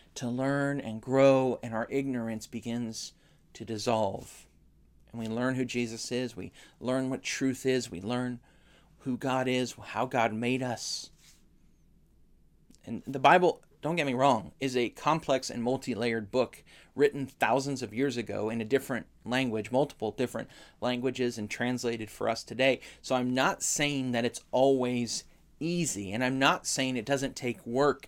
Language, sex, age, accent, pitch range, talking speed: English, male, 30-49, American, 115-135 Hz, 160 wpm